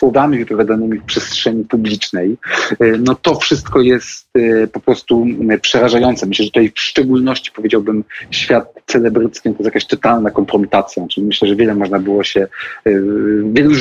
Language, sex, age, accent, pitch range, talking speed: Polish, male, 40-59, native, 105-130 Hz, 140 wpm